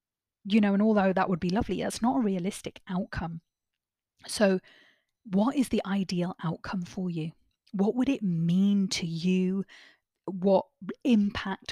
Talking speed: 150 wpm